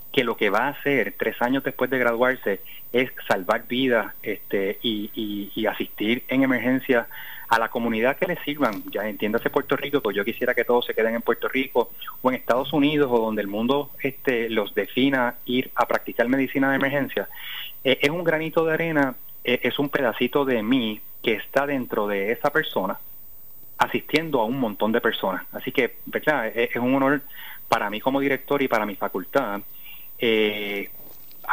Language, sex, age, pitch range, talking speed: Spanish, male, 30-49, 115-140 Hz, 185 wpm